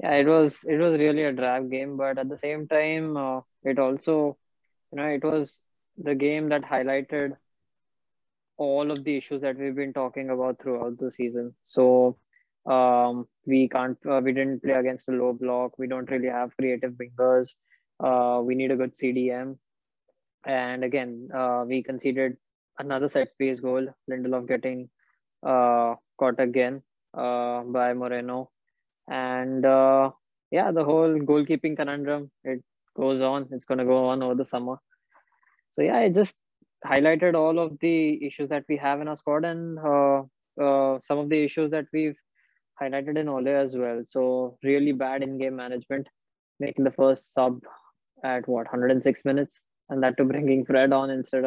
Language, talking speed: English, 170 wpm